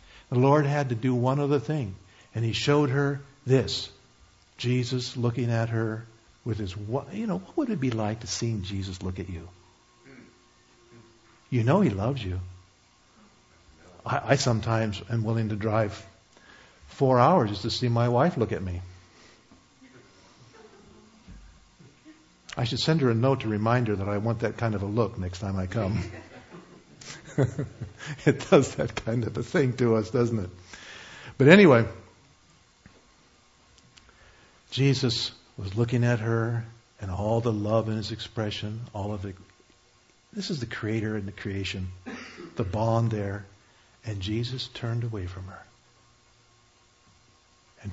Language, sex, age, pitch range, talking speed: English, male, 60-79, 95-120 Hz, 150 wpm